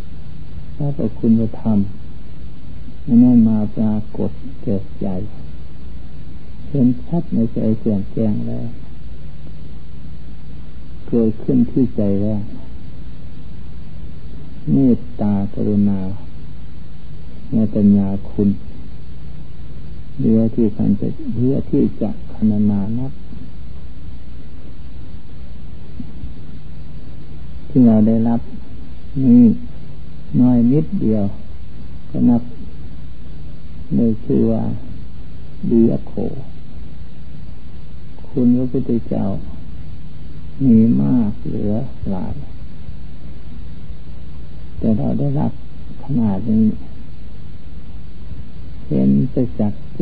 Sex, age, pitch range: male, 60-79, 80-115 Hz